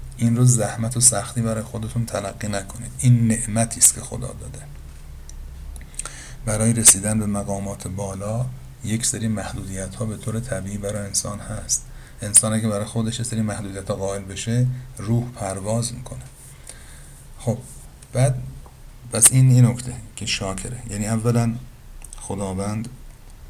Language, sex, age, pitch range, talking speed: Persian, male, 50-69, 95-120 Hz, 135 wpm